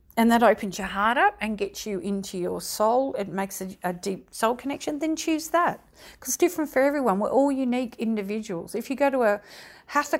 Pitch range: 190-240 Hz